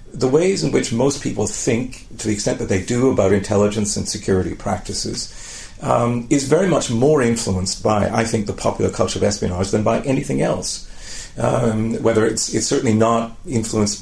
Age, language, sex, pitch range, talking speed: 40-59, English, male, 105-130 Hz, 185 wpm